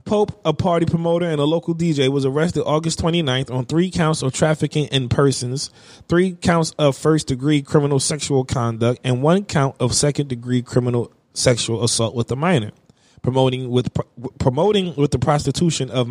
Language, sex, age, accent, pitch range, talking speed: English, male, 20-39, American, 130-175 Hz, 170 wpm